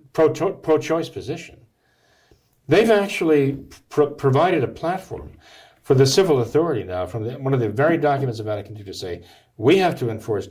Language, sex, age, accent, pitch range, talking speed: English, male, 50-69, American, 115-150 Hz, 170 wpm